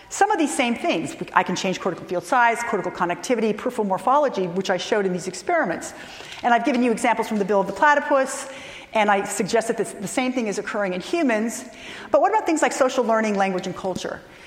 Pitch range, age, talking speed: 195-255 Hz, 40-59, 220 wpm